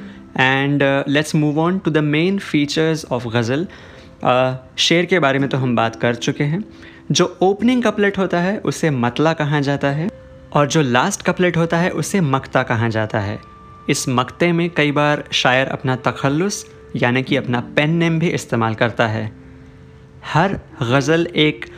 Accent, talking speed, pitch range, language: native, 165 wpm, 130-165 Hz, Hindi